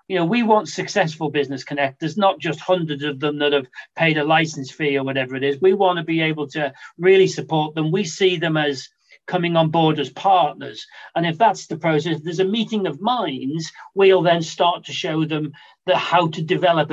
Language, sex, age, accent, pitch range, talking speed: English, male, 40-59, British, 155-190 Hz, 215 wpm